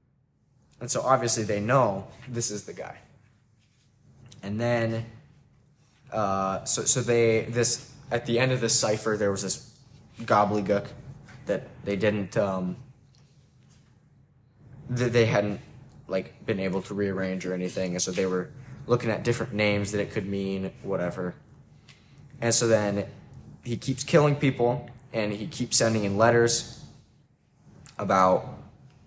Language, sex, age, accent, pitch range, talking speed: English, male, 20-39, American, 100-130 Hz, 140 wpm